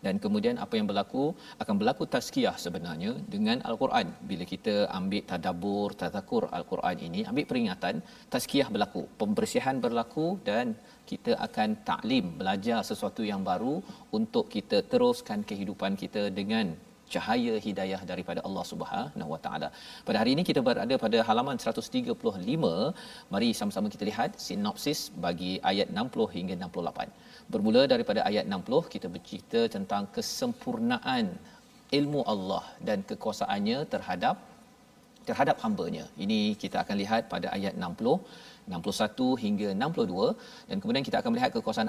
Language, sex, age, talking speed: Malayalam, male, 40-59, 135 wpm